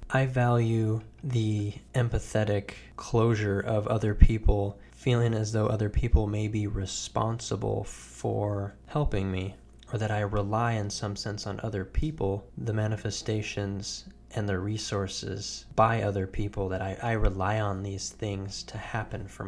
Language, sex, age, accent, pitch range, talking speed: English, male, 20-39, American, 100-110 Hz, 145 wpm